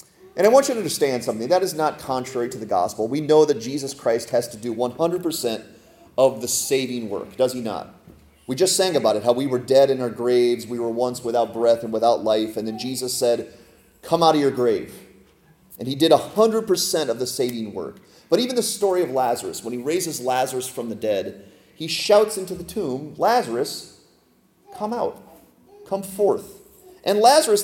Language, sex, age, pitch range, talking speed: English, male, 30-49, 120-185 Hz, 200 wpm